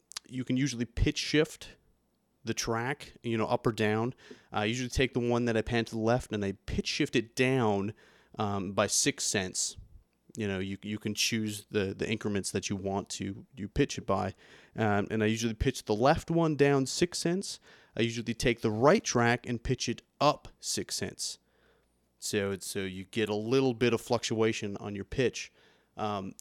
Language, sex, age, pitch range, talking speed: English, male, 30-49, 105-125 Hz, 200 wpm